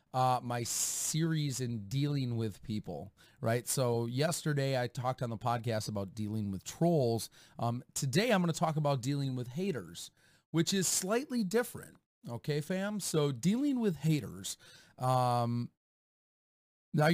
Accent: American